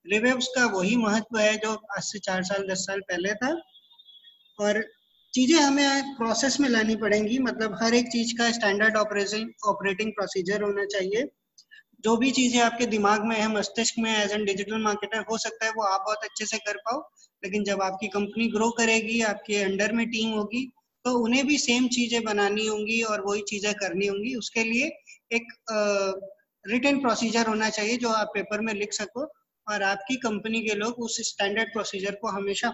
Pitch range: 205-235 Hz